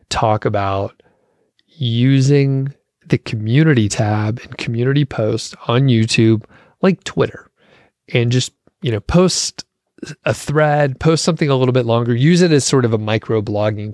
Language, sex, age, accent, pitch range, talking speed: English, male, 30-49, American, 110-135 Hz, 140 wpm